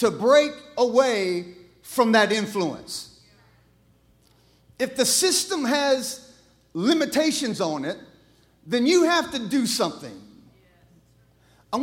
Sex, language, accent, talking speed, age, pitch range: male, English, American, 100 wpm, 50-69, 245-310 Hz